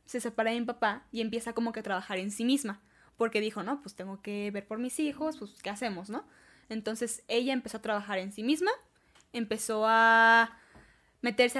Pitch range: 215-260 Hz